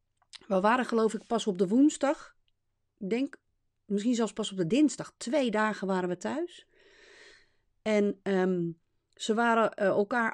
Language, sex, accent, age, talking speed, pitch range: Dutch, female, Dutch, 30-49, 150 wpm, 200-270 Hz